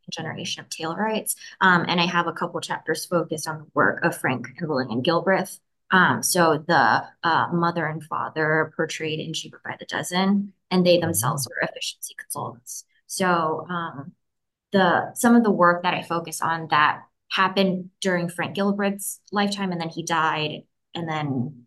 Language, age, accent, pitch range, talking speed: English, 20-39, American, 160-185 Hz, 170 wpm